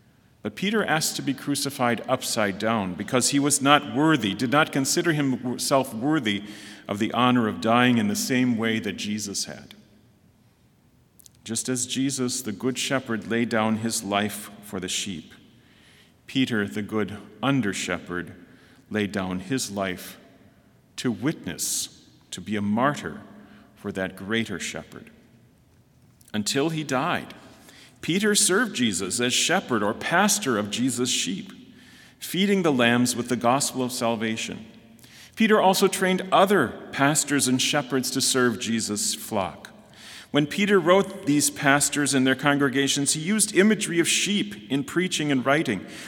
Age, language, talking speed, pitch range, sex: 40-59, English, 145 wpm, 115-155 Hz, male